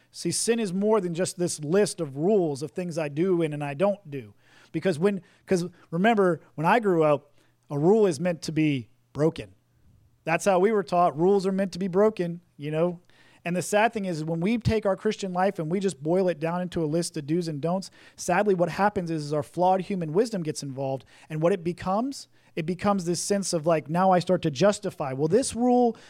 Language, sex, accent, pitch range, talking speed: English, male, American, 155-200 Hz, 230 wpm